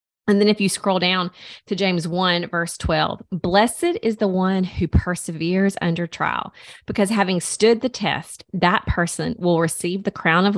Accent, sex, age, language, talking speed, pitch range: American, female, 30-49, English, 175 wpm, 180-215 Hz